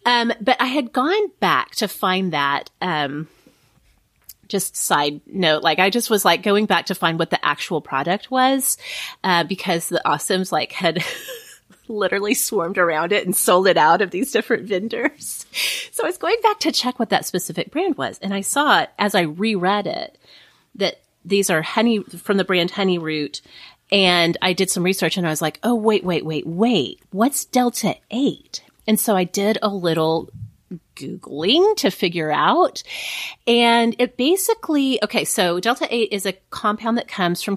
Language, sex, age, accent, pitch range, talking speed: English, female, 30-49, American, 170-230 Hz, 175 wpm